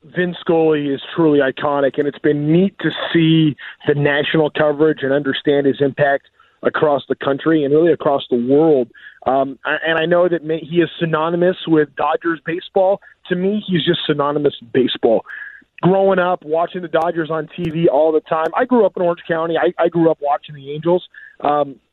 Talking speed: 185 wpm